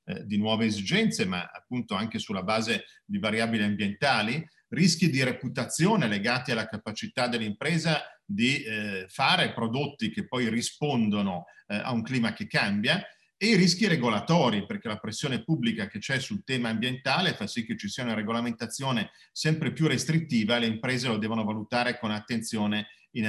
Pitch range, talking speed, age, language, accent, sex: 115-155 Hz, 160 wpm, 40-59, Italian, native, male